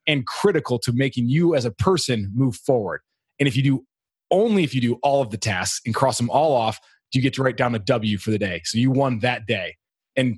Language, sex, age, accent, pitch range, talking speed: English, male, 30-49, American, 115-140 Hz, 255 wpm